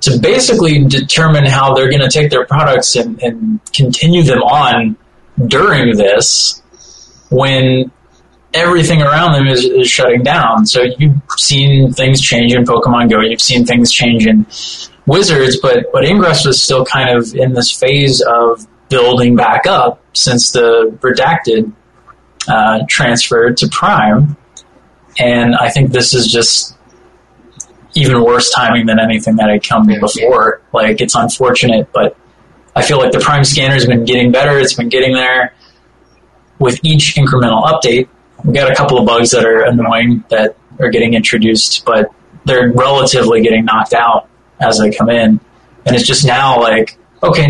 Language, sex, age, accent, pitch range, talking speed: English, male, 20-39, American, 120-145 Hz, 160 wpm